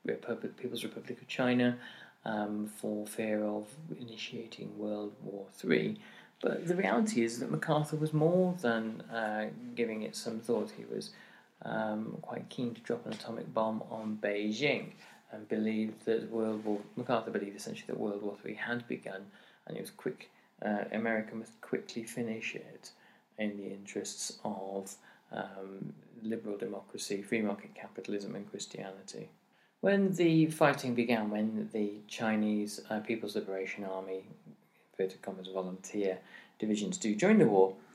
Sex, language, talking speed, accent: male, English, 145 wpm, British